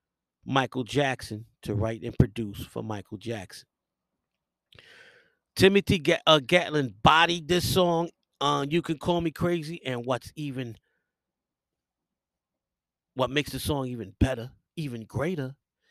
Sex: male